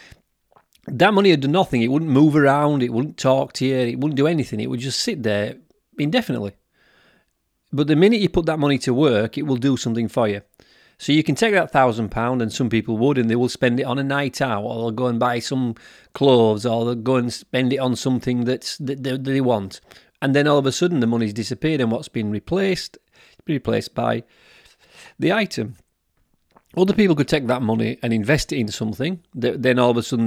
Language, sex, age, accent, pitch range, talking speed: English, male, 30-49, British, 115-145 Hz, 220 wpm